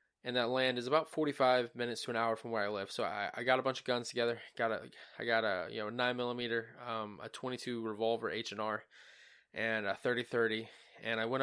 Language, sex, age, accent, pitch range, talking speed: English, male, 20-39, American, 110-125 Hz, 235 wpm